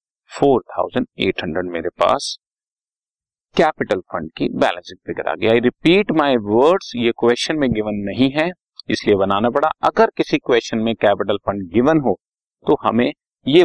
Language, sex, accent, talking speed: Hindi, male, native, 135 wpm